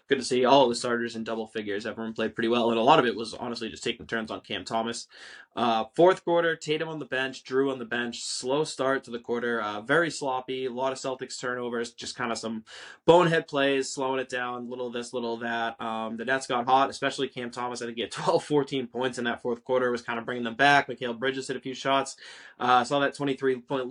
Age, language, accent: 20-39, English, American